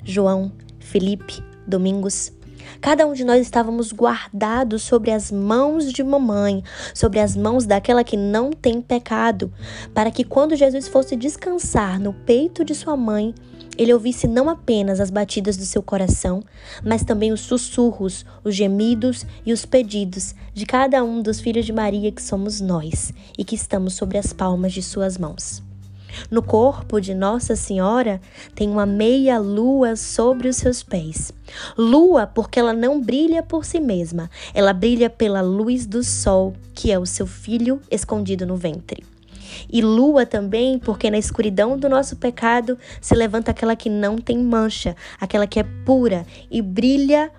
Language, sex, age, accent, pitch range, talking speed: Portuguese, female, 10-29, Brazilian, 200-245 Hz, 160 wpm